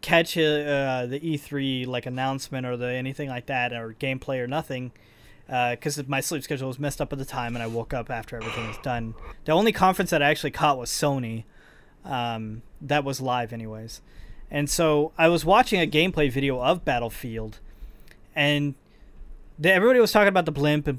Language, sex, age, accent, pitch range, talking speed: English, male, 20-39, American, 125-165 Hz, 190 wpm